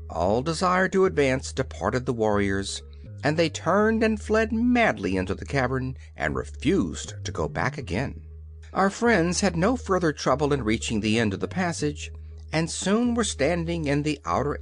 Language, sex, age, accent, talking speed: English, male, 60-79, American, 170 wpm